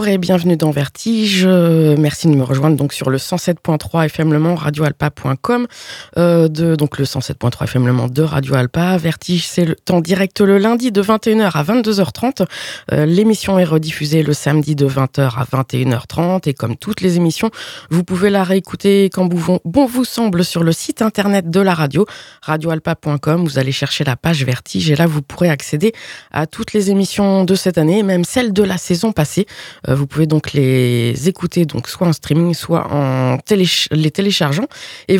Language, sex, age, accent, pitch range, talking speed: French, female, 20-39, French, 145-185 Hz, 190 wpm